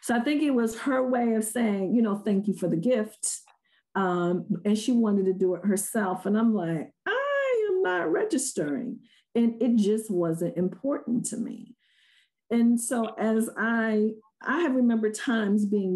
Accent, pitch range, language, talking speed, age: American, 180-230 Hz, English, 175 wpm, 50-69